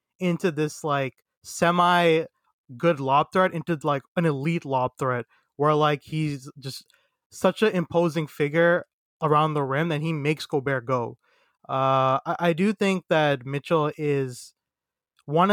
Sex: male